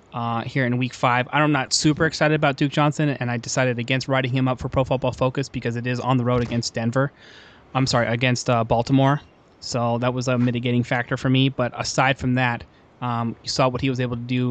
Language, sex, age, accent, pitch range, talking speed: English, male, 20-39, American, 115-135 Hz, 235 wpm